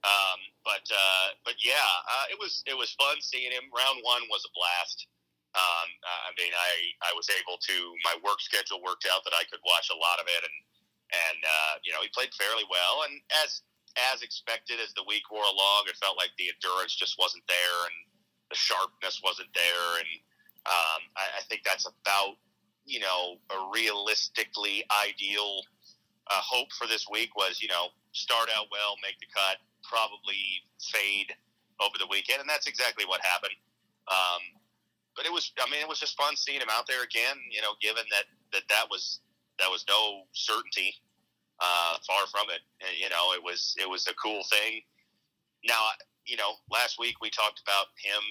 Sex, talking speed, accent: male, 190 wpm, American